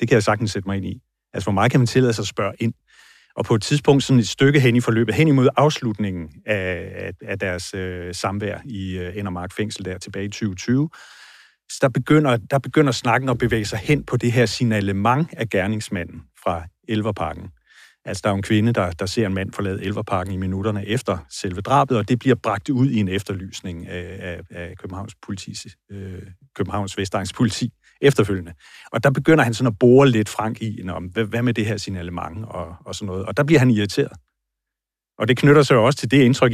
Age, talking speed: 30-49, 215 wpm